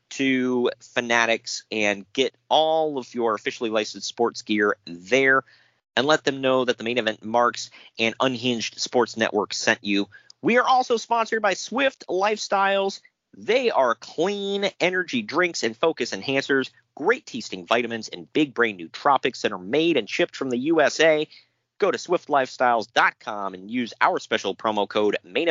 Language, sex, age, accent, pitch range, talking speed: English, male, 40-59, American, 115-170 Hz, 160 wpm